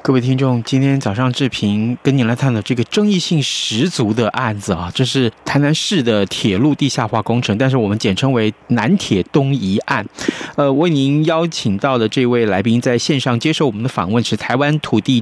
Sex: male